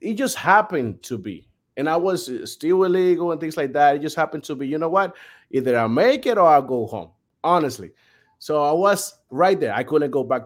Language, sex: English, male